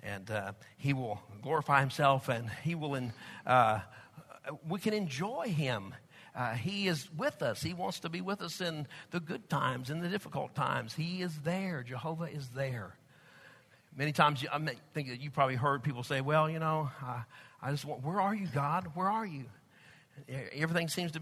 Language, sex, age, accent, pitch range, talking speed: English, male, 50-69, American, 140-195 Hz, 195 wpm